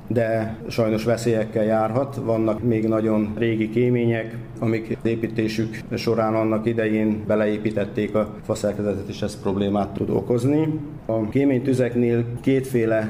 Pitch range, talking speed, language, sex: 105-120 Hz, 115 wpm, Hungarian, male